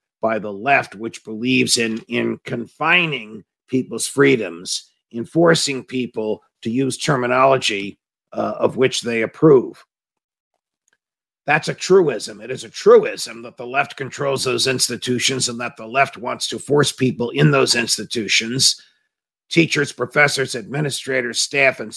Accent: American